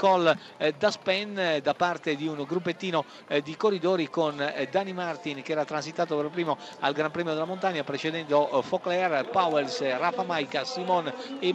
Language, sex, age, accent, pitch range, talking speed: Italian, male, 50-69, native, 160-200 Hz, 150 wpm